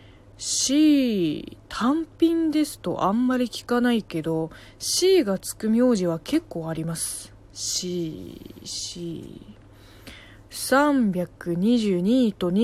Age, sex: 20-39, female